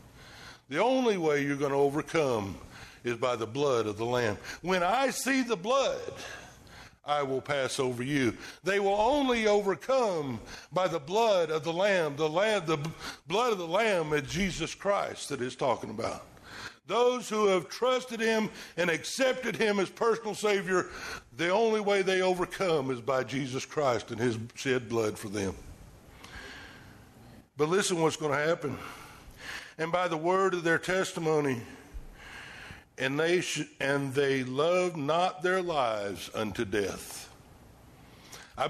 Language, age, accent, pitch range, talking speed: English, 60-79, American, 125-180 Hz, 160 wpm